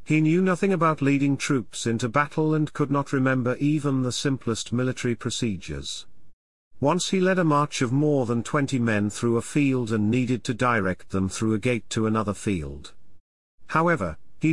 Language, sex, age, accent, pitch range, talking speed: English, male, 50-69, British, 105-145 Hz, 180 wpm